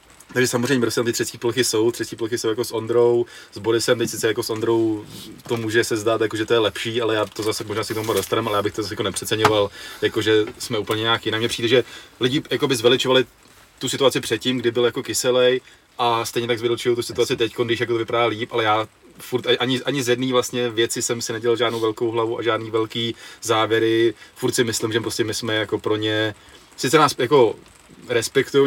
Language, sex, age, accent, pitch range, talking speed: Czech, male, 20-39, native, 110-120 Hz, 225 wpm